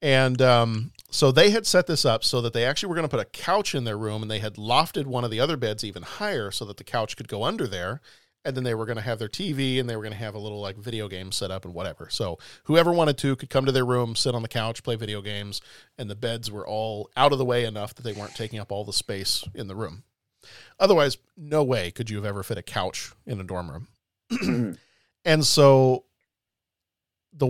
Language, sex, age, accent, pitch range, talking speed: English, male, 40-59, American, 110-135 Hz, 255 wpm